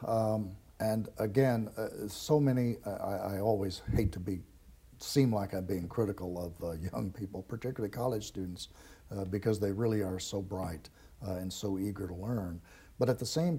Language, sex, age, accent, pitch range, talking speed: English, male, 60-79, American, 95-120 Hz, 180 wpm